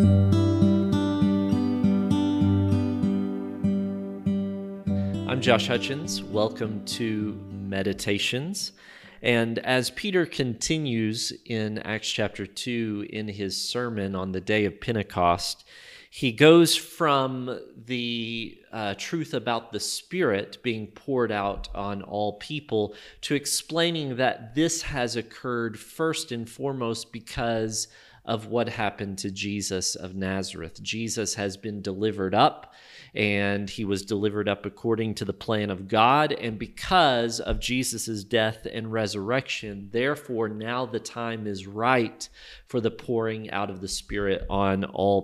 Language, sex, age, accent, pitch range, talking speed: English, male, 30-49, American, 100-130 Hz, 120 wpm